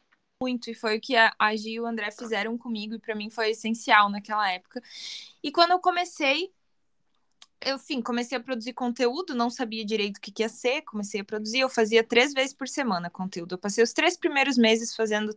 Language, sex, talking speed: Portuguese, female, 215 wpm